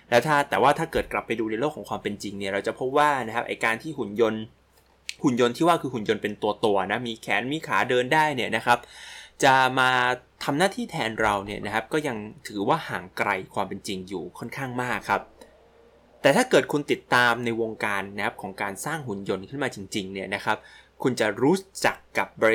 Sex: male